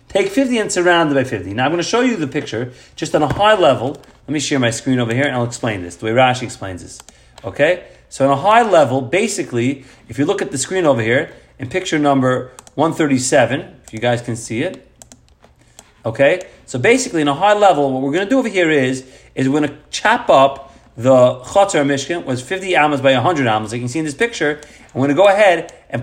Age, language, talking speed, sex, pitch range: 30-49, English, 240 wpm, male, 125-175 Hz